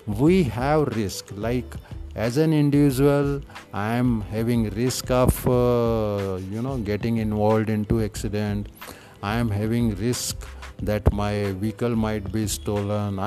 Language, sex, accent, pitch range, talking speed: Hindi, male, native, 105-125 Hz, 130 wpm